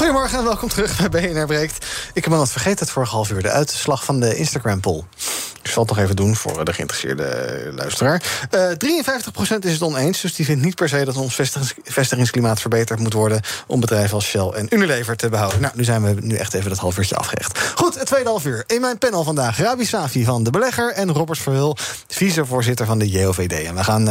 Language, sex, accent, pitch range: Dutch, male, Dutch, 120-170 Hz